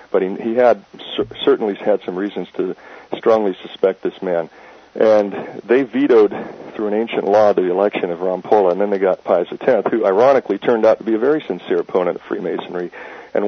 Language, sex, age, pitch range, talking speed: English, male, 50-69, 95-115 Hz, 185 wpm